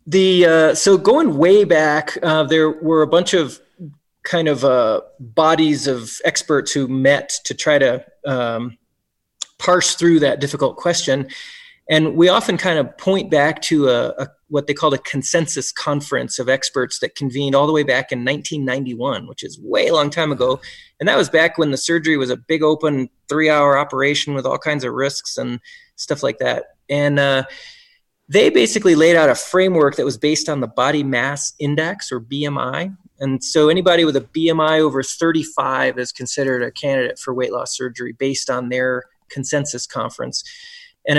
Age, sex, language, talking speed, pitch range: 20-39, male, English, 180 wpm, 135-165 Hz